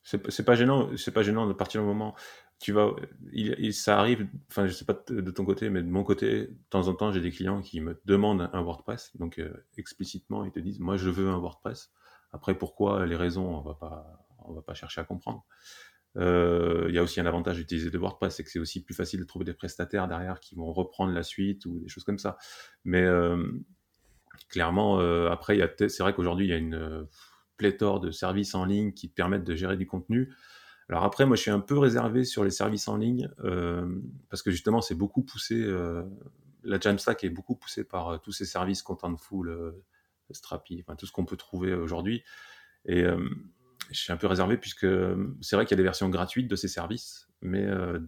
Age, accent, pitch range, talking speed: 30-49, French, 85-105 Hz, 235 wpm